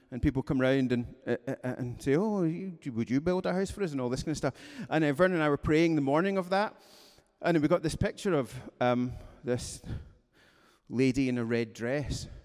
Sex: male